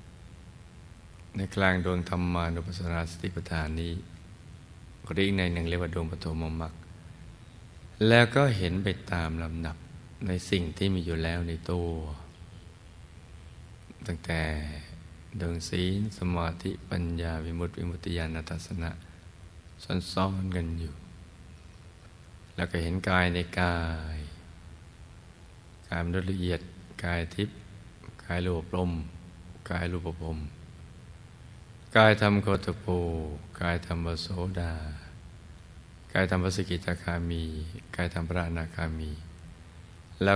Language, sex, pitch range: Thai, male, 85-95 Hz